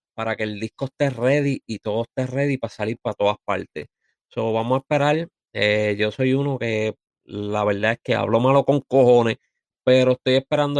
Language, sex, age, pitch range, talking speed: Spanish, male, 30-49, 110-130 Hz, 190 wpm